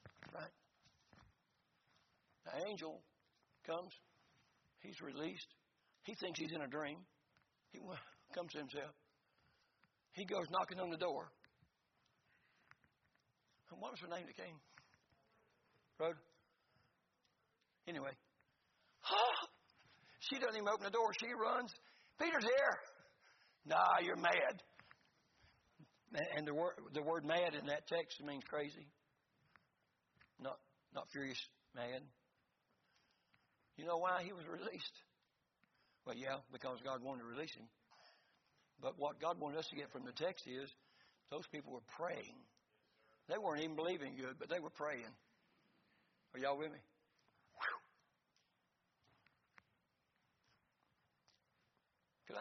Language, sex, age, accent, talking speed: English, male, 60-79, American, 115 wpm